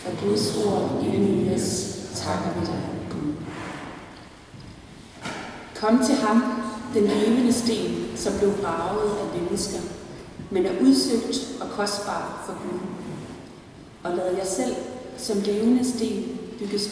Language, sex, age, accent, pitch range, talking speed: Danish, female, 30-49, native, 175-220 Hz, 120 wpm